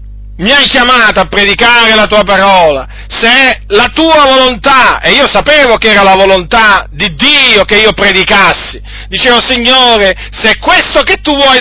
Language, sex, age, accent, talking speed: Italian, male, 40-59, native, 170 wpm